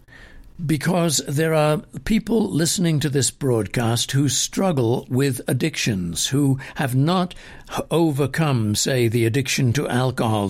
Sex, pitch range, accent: male, 120-160 Hz, British